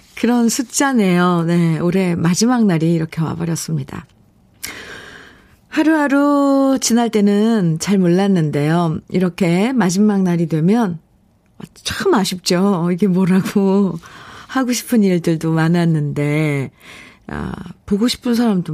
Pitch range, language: 170-225 Hz, Korean